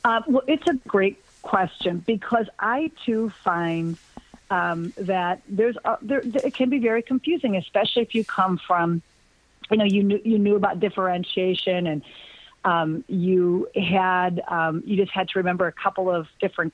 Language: English